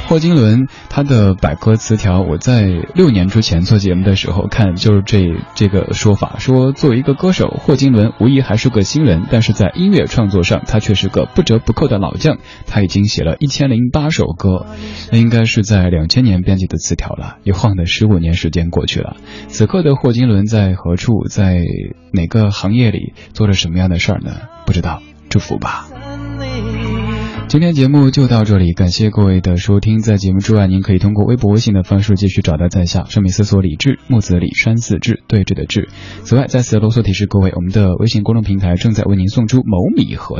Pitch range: 95-120 Hz